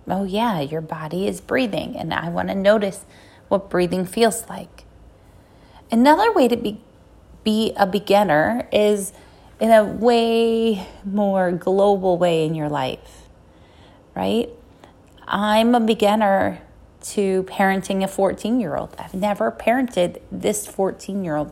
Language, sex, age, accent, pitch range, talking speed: English, female, 30-49, American, 170-225 Hz, 125 wpm